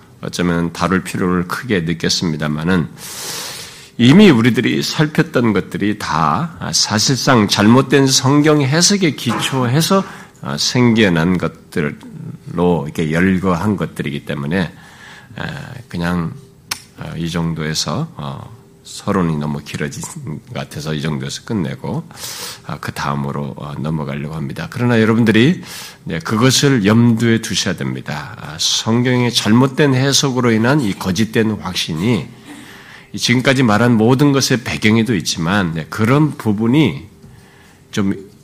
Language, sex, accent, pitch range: Korean, male, native, 85-130 Hz